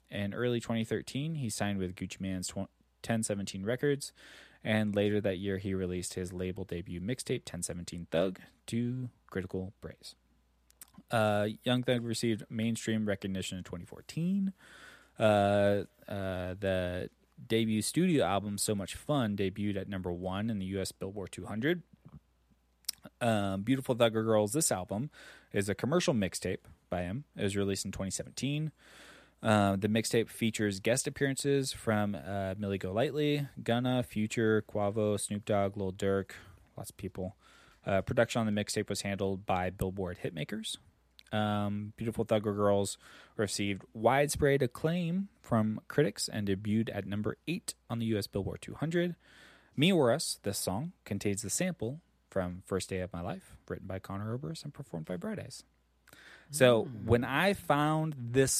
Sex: male